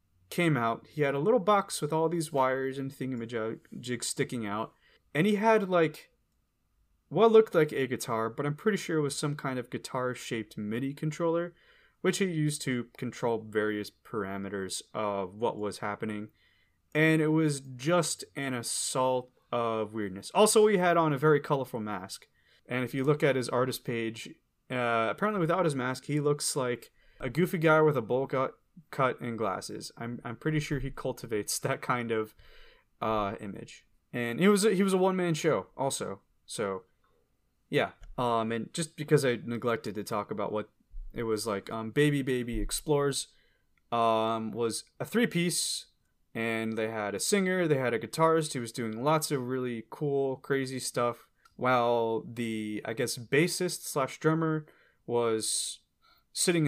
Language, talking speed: English, 170 wpm